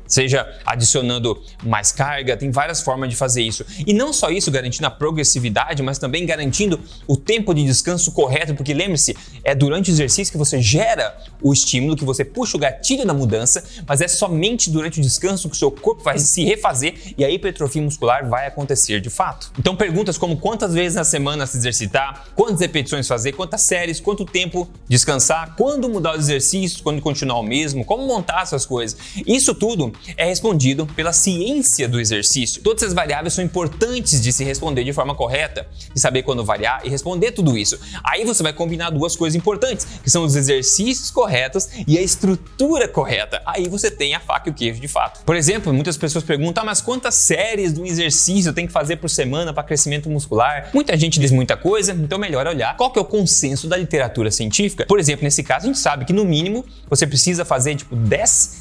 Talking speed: 200 wpm